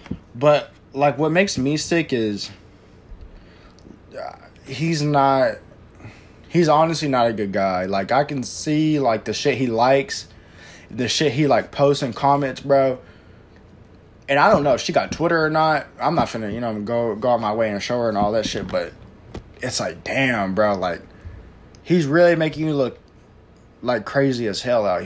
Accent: American